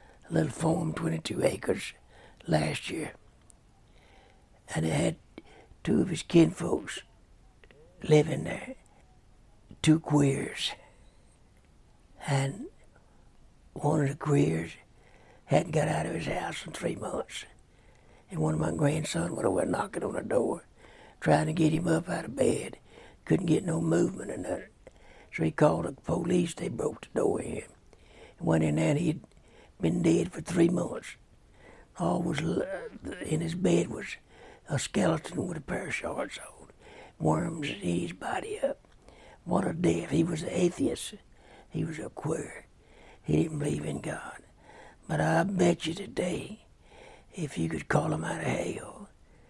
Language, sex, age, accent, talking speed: English, male, 60-79, American, 155 wpm